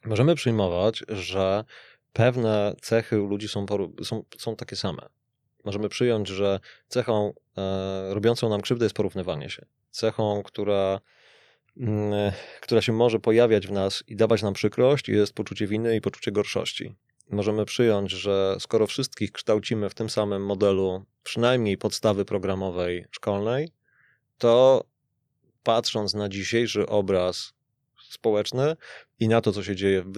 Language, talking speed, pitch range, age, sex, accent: Polish, 130 wpm, 100-115 Hz, 20-39, male, native